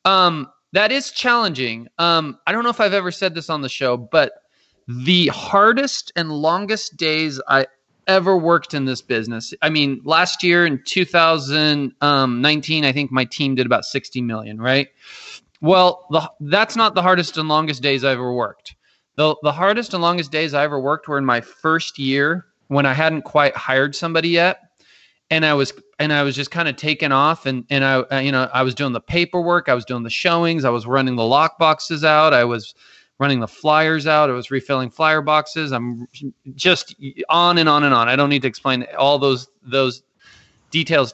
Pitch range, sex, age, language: 135-170 Hz, male, 20-39, English